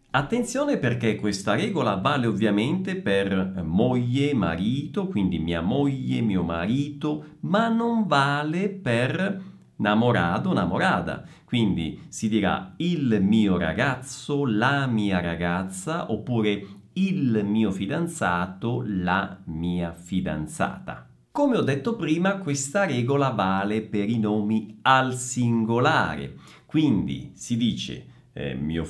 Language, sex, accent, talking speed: Italian, male, native, 110 wpm